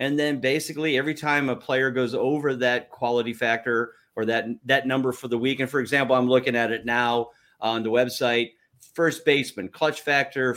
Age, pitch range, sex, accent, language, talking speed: 30-49, 120-160 Hz, male, American, English, 195 wpm